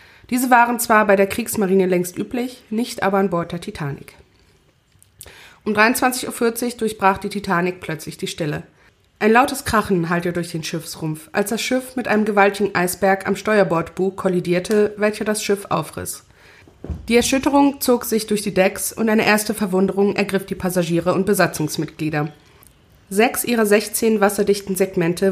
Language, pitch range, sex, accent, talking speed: German, 185-220 Hz, female, German, 155 wpm